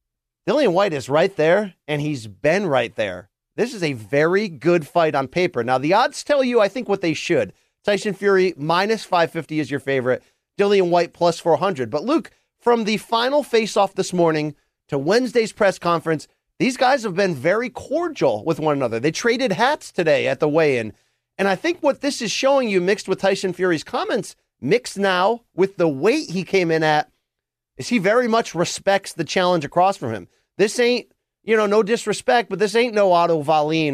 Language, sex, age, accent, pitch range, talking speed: English, male, 40-59, American, 160-215 Hz, 195 wpm